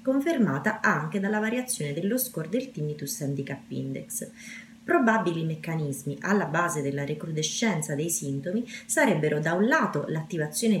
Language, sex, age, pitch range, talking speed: Italian, female, 30-49, 150-230 Hz, 130 wpm